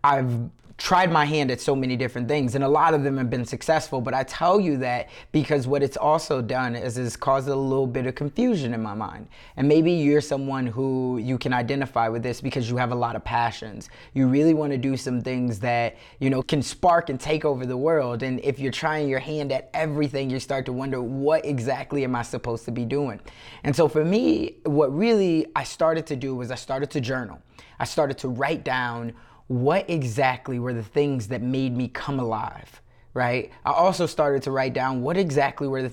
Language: English